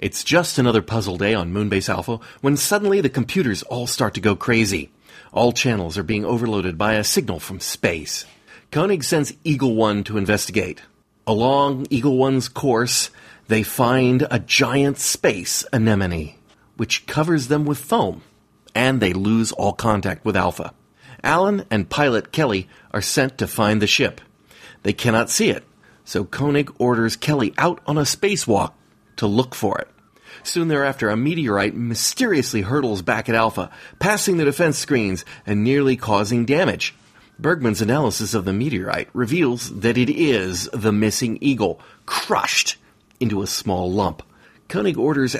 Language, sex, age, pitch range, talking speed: English, male, 40-59, 105-140 Hz, 155 wpm